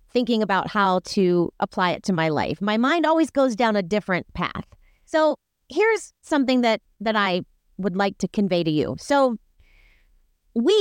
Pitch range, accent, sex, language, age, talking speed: 195-295 Hz, American, female, English, 30-49, 170 wpm